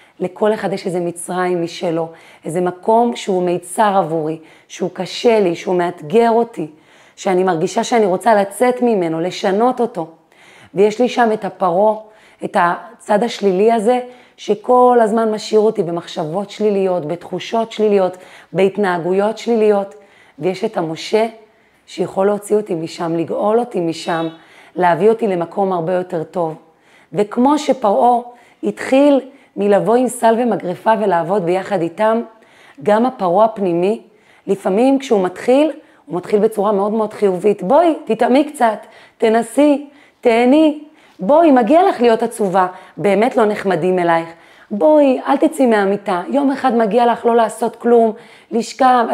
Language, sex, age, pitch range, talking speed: Hebrew, female, 30-49, 185-240 Hz, 130 wpm